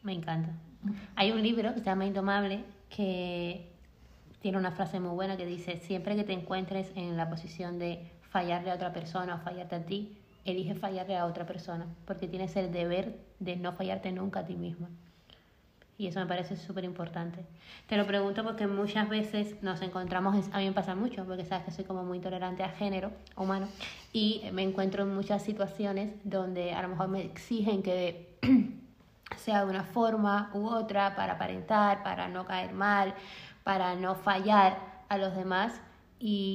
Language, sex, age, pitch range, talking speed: Spanish, female, 20-39, 180-200 Hz, 180 wpm